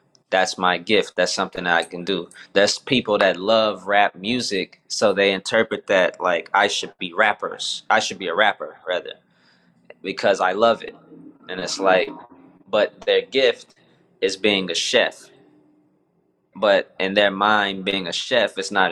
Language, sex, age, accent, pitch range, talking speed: English, male, 20-39, American, 95-110 Hz, 165 wpm